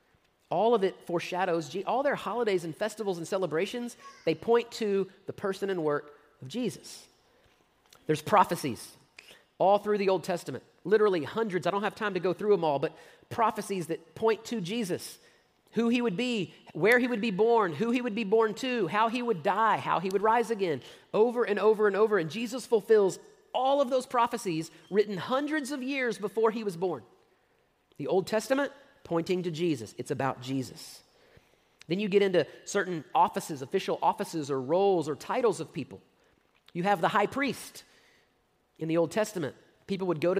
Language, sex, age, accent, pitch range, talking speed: English, male, 40-59, American, 170-230 Hz, 185 wpm